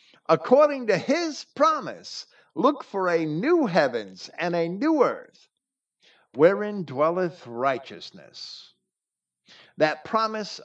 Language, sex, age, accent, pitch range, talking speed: English, male, 50-69, American, 150-230 Hz, 100 wpm